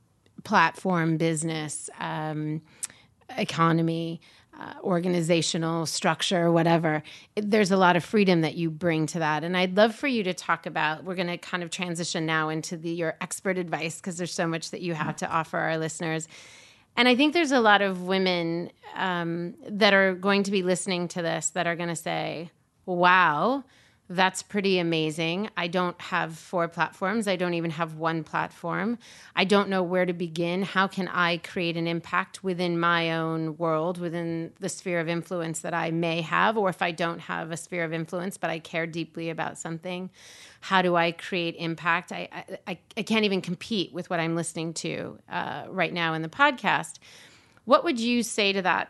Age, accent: 30-49, American